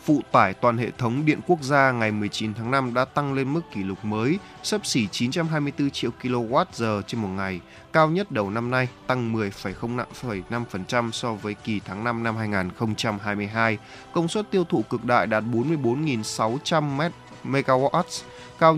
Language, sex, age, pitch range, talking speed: Vietnamese, male, 20-39, 110-140 Hz, 165 wpm